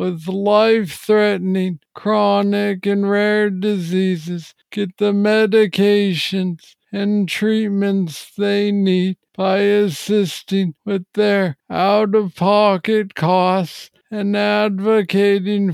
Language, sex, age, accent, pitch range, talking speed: English, male, 60-79, American, 180-210 Hz, 90 wpm